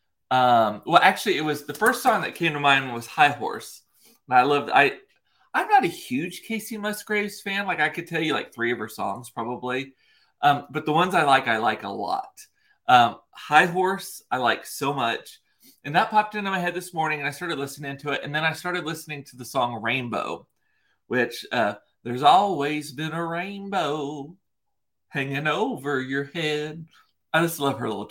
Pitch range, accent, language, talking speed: 135-185 Hz, American, English, 200 wpm